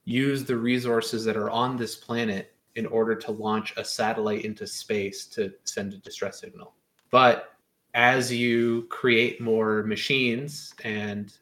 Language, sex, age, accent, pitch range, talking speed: English, male, 20-39, American, 105-125 Hz, 145 wpm